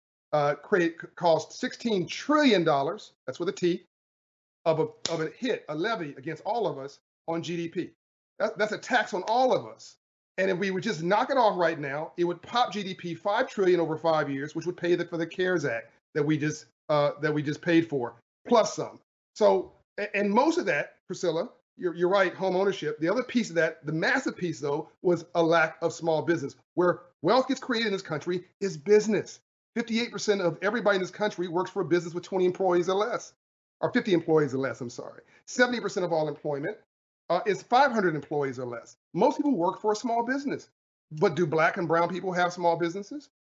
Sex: male